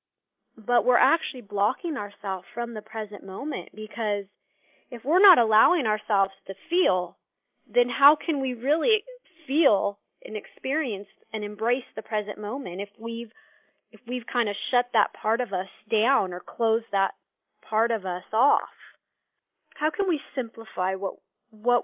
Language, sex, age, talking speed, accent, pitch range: English, female, 20-39, 150 wpm, American, 205-255 Hz